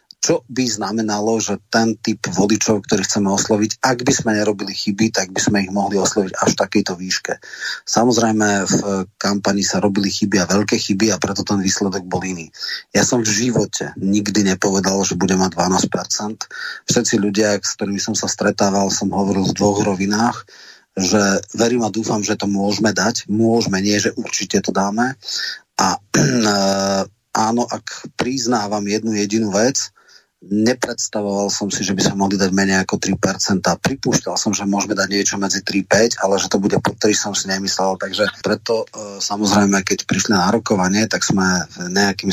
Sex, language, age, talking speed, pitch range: male, Slovak, 30-49, 170 wpm, 100-110 Hz